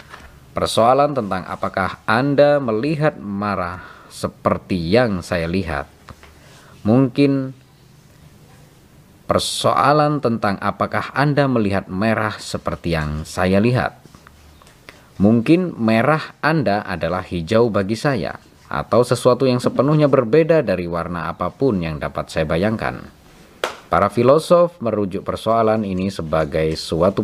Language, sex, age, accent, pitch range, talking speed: Indonesian, male, 20-39, native, 90-130 Hz, 105 wpm